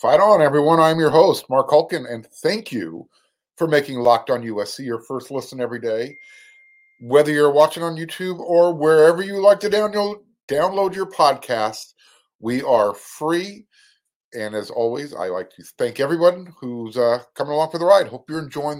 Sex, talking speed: male, 175 wpm